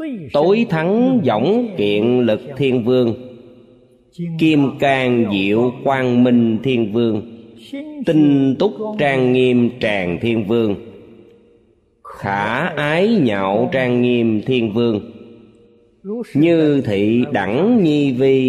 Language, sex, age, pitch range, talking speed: Vietnamese, male, 30-49, 105-155 Hz, 105 wpm